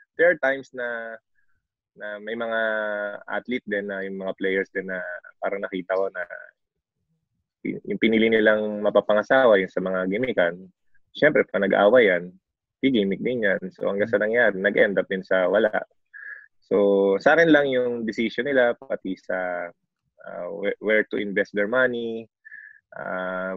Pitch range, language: 95-110 Hz, English